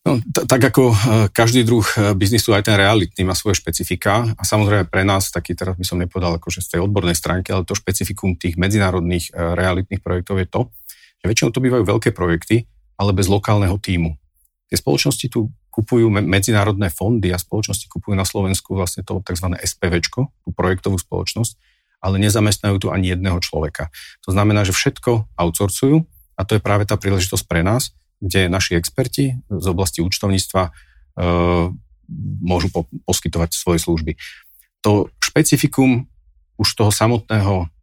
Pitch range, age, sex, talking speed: 90-110 Hz, 40-59, male, 160 wpm